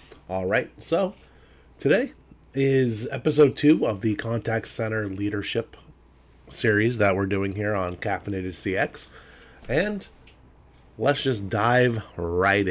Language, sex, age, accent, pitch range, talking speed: English, male, 30-49, American, 85-130 Hz, 120 wpm